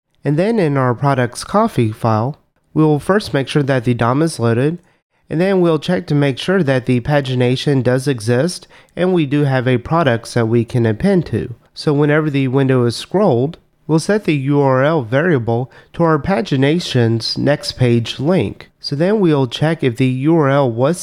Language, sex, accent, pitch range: English, male, American, 125-165 Hz